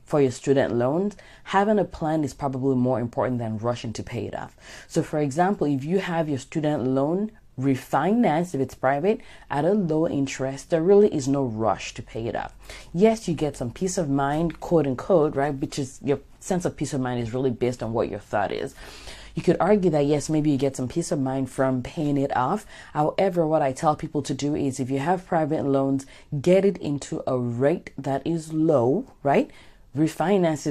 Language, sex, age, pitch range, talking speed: English, female, 30-49, 135-165 Hz, 210 wpm